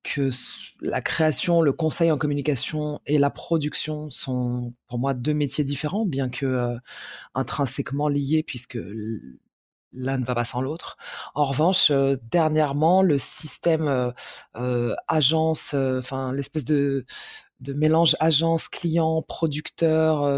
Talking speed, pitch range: 135 wpm, 130-160 Hz